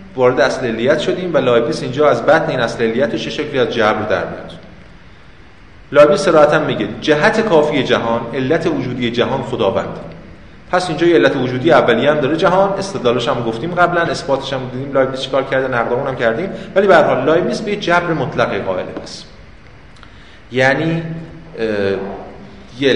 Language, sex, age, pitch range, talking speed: Persian, male, 30-49, 115-160 Hz, 160 wpm